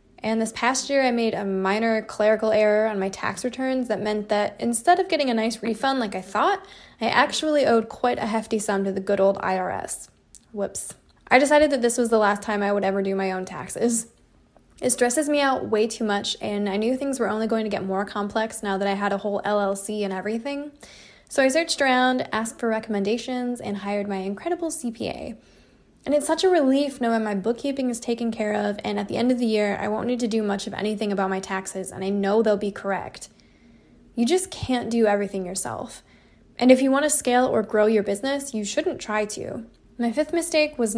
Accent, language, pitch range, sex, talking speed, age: American, English, 205-255 Hz, female, 225 wpm, 10-29